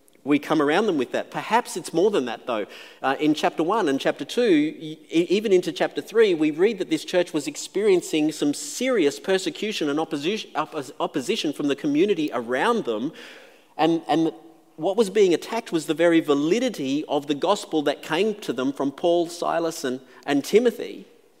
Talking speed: 170 wpm